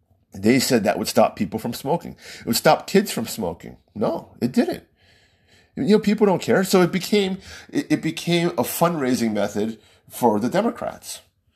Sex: male